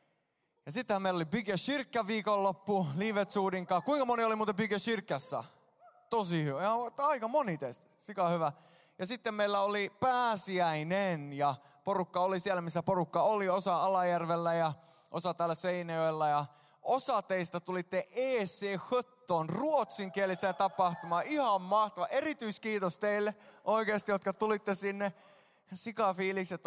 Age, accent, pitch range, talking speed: 20-39, native, 160-205 Hz, 120 wpm